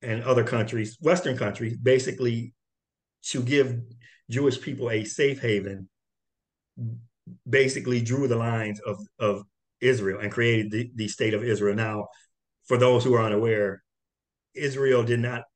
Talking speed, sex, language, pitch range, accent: 140 wpm, male, English, 105-125 Hz, American